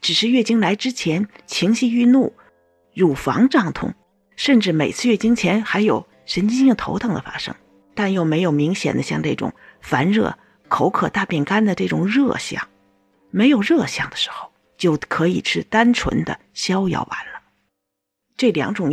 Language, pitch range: Chinese, 170-250 Hz